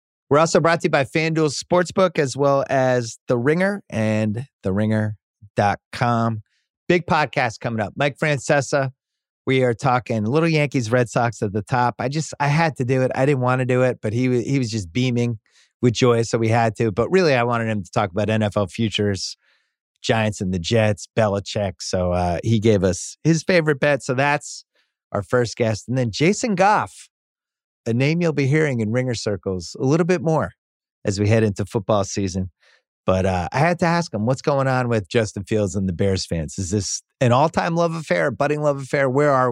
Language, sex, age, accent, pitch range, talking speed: English, male, 30-49, American, 105-140 Hz, 205 wpm